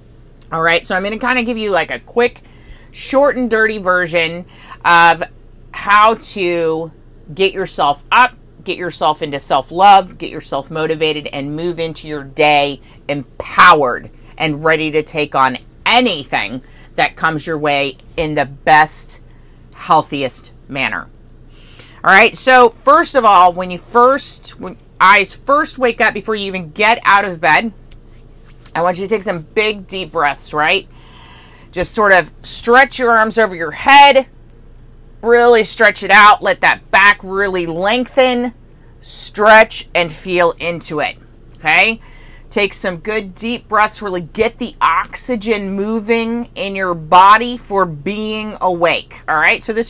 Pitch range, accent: 155-220 Hz, American